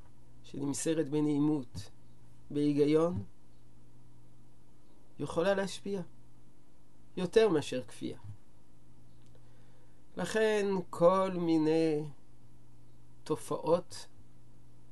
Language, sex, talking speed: Hebrew, male, 50 wpm